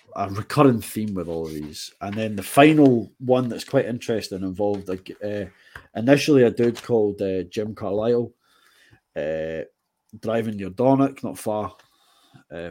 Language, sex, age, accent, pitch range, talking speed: English, male, 20-39, British, 95-115 Hz, 145 wpm